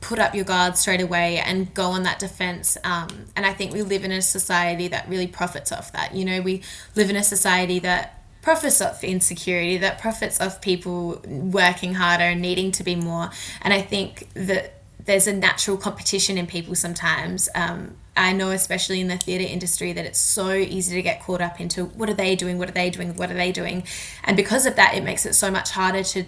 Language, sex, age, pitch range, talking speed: English, female, 20-39, 175-195 Hz, 225 wpm